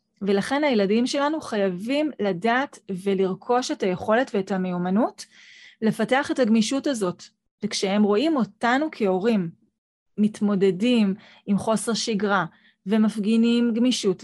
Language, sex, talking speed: Hebrew, female, 100 wpm